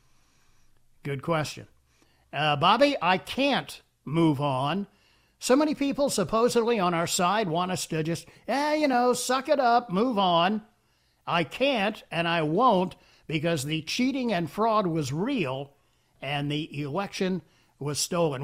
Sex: male